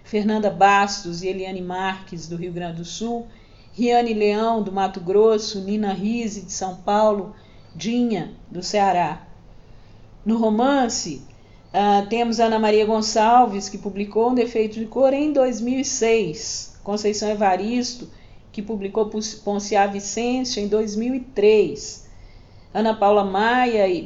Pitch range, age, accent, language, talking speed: 190-230 Hz, 50-69, Brazilian, Portuguese, 120 wpm